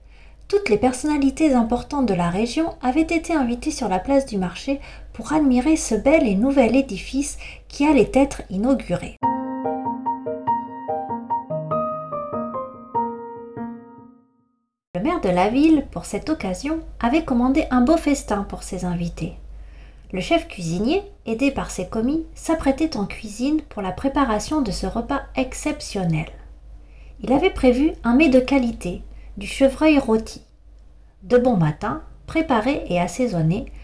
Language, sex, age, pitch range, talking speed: French, female, 40-59, 195-285 Hz, 135 wpm